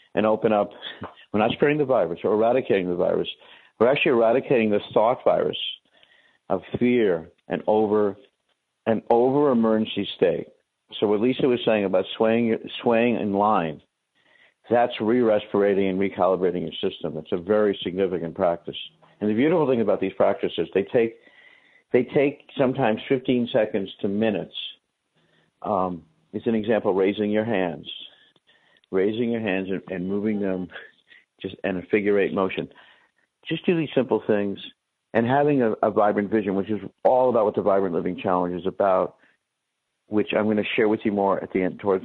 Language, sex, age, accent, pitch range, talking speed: English, male, 50-69, American, 100-125 Hz, 165 wpm